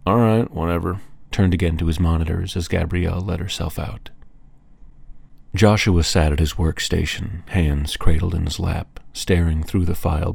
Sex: male